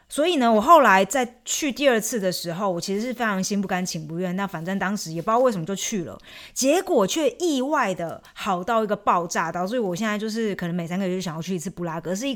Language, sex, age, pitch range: Chinese, female, 20-39, 180-235 Hz